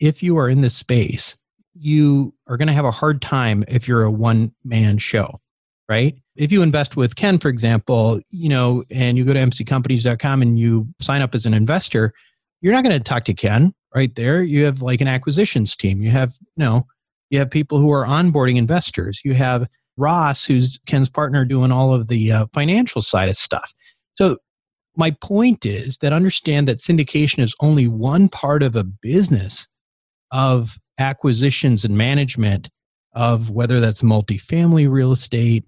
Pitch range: 115-145 Hz